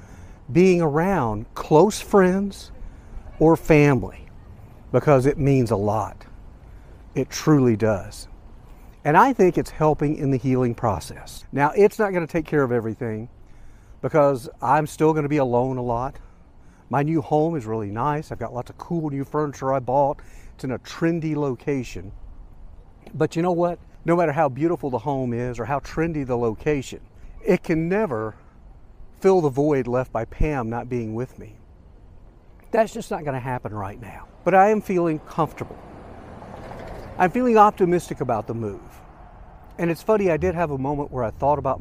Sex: male